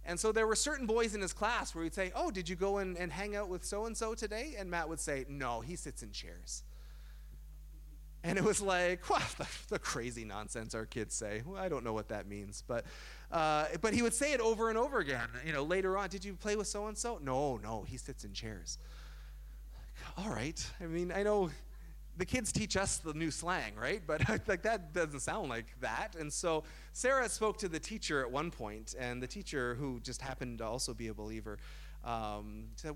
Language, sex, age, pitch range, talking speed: English, male, 30-49, 115-185 Hz, 215 wpm